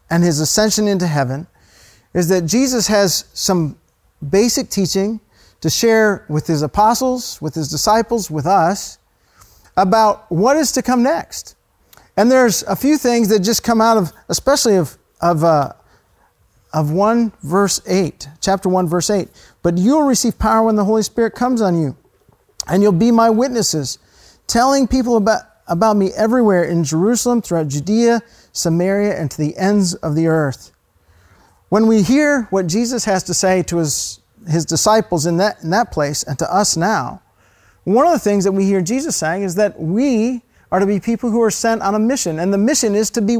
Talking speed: 185 wpm